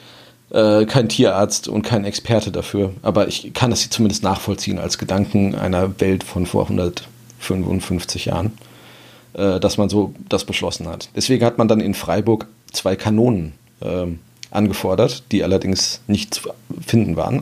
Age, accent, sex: 30-49, German, male